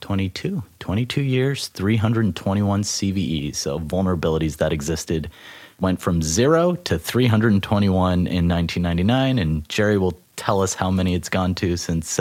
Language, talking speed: English, 135 wpm